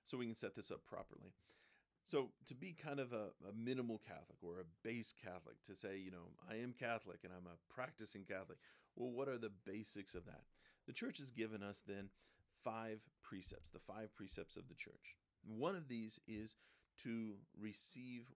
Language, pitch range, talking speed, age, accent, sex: English, 95-120 Hz, 195 wpm, 40-59, American, male